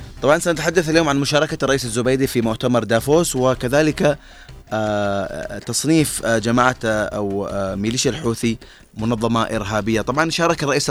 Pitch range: 115-135 Hz